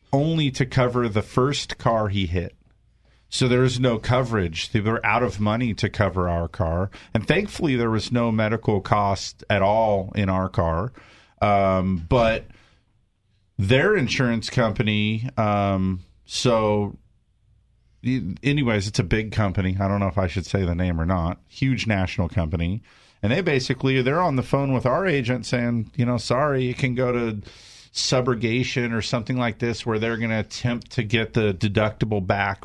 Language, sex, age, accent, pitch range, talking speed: English, male, 50-69, American, 95-125 Hz, 170 wpm